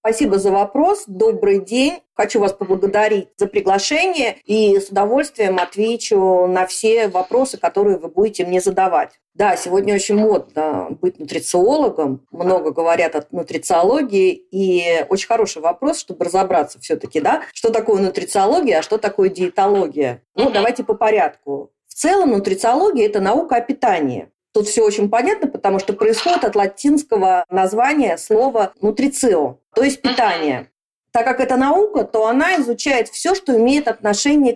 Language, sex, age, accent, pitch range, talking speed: Russian, female, 40-59, native, 190-270 Hz, 150 wpm